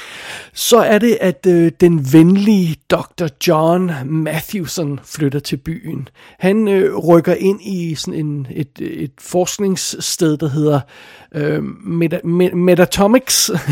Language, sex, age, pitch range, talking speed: Danish, male, 60-79, 145-175 Hz, 95 wpm